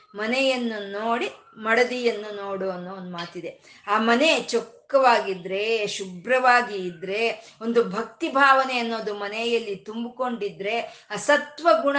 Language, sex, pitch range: Kannada, female, 205-280 Hz